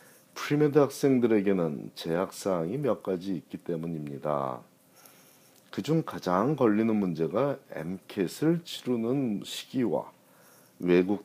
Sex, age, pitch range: male, 40-59, 85-130 Hz